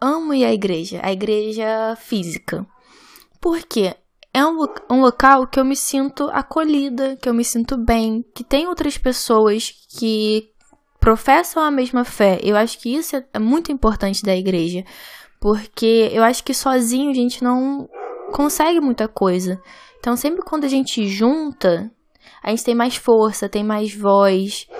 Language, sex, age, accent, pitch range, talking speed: Portuguese, female, 10-29, Brazilian, 220-275 Hz, 155 wpm